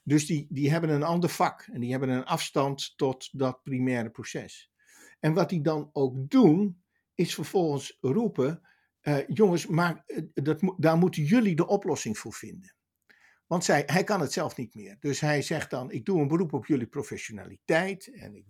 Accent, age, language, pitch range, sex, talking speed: Dutch, 60-79, Dutch, 135-180 Hz, male, 180 wpm